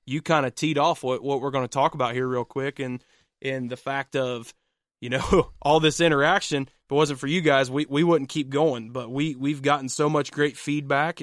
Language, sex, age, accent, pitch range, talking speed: English, male, 20-39, American, 130-155 Hz, 235 wpm